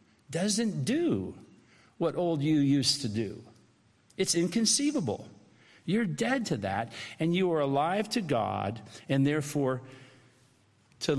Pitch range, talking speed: 120-155 Hz, 140 wpm